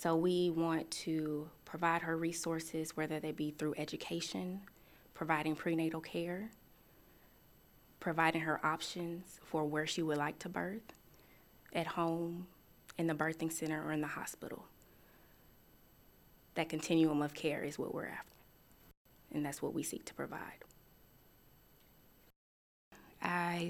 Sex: female